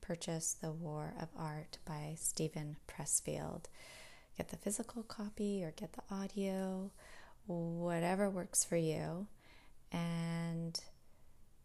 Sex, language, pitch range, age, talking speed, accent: female, English, 160-190 Hz, 20-39, 110 wpm, American